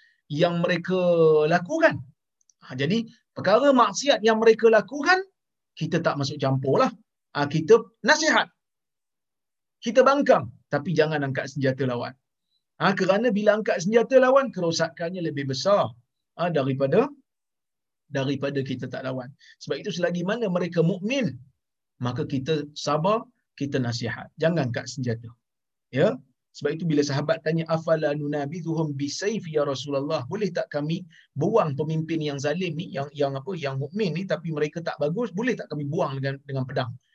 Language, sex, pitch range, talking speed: Malayalam, male, 135-185 Hz, 140 wpm